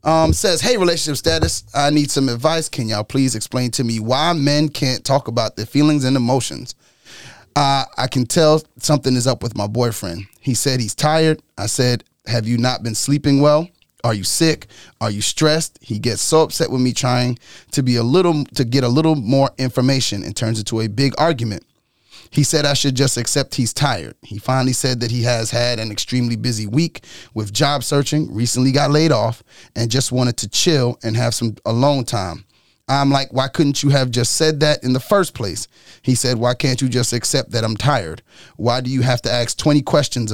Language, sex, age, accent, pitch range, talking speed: English, male, 30-49, American, 115-145 Hz, 210 wpm